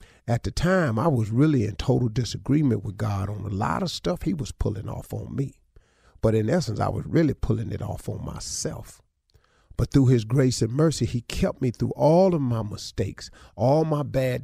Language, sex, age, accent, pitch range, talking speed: English, male, 50-69, American, 105-130 Hz, 210 wpm